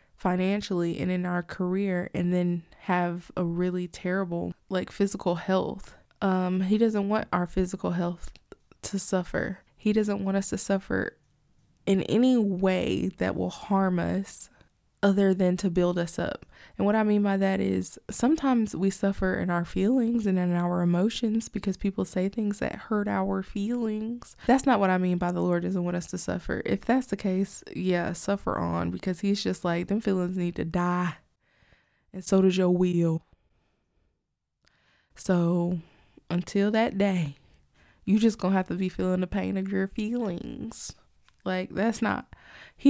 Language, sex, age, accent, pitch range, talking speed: English, female, 20-39, American, 175-200 Hz, 170 wpm